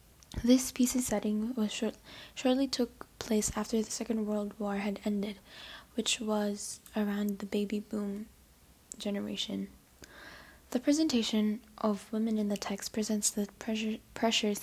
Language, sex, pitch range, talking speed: English, female, 205-225 Hz, 135 wpm